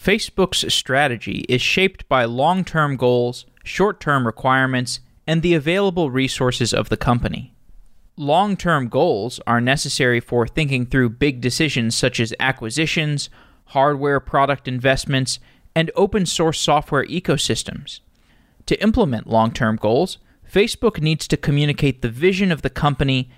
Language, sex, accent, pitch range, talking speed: English, male, American, 125-170 Hz, 125 wpm